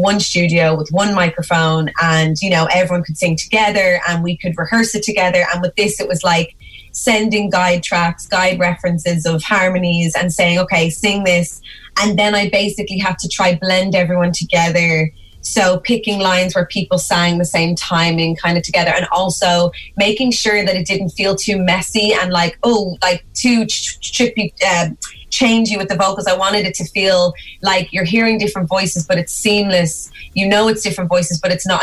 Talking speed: 190 wpm